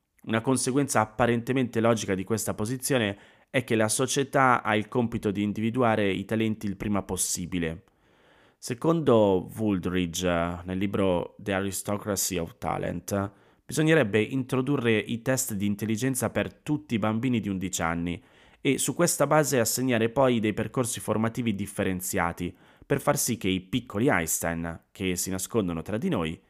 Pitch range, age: 90-115 Hz, 20-39